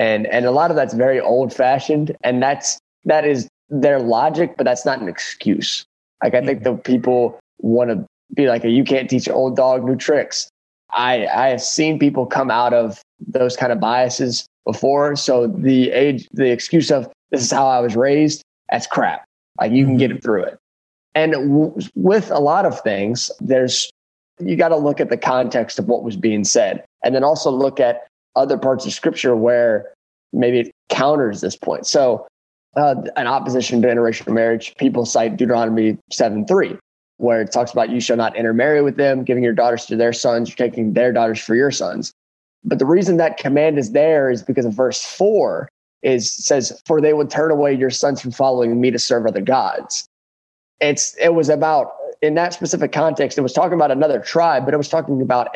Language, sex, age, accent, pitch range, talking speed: English, male, 20-39, American, 120-145 Hz, 200 wpm